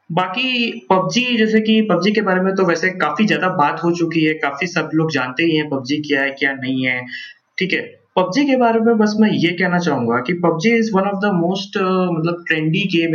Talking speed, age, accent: 225 wpm, 20-39, native